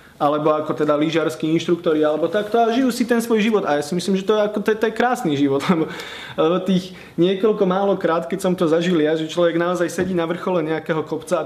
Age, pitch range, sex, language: 30-49, 145-185 Hz, male, Slovak